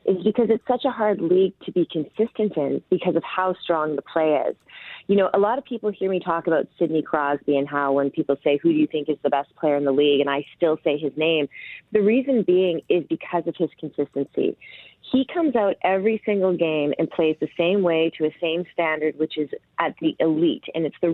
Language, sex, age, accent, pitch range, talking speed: English, female, 30-49, American, 150-190 Hz, 235 wpm